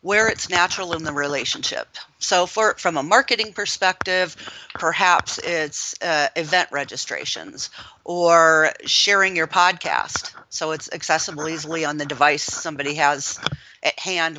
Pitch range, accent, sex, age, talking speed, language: 150-175 Hz, American, female, 40-59, 135 wpm, English